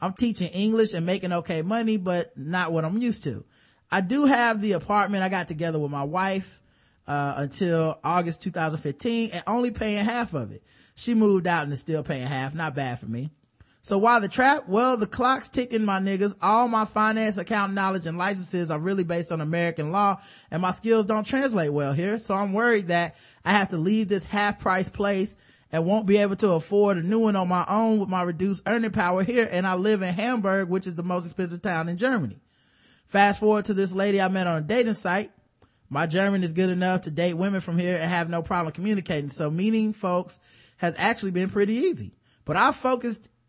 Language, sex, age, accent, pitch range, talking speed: English, male, 30-49, American, 170-215 Hz, 215 wpm